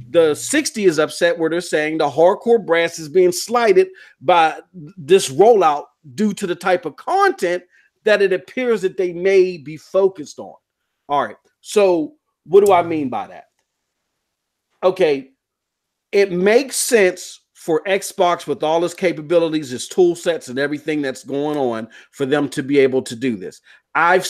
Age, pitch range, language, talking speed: 40-59, 150-190 Hz, English, 165 wpm